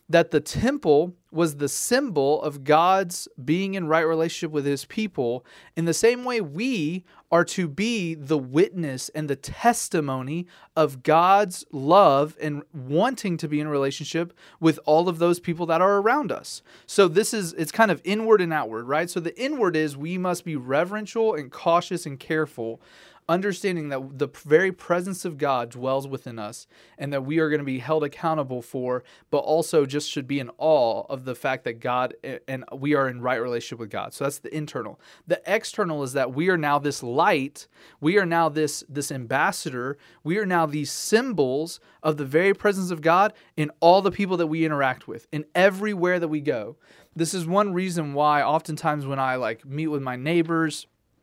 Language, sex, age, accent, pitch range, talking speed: English, male, 30-49, American, 140-175 Hz, 190 wpm